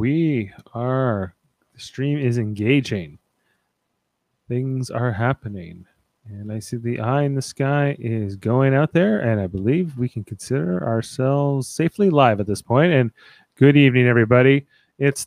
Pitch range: 110-140 Hz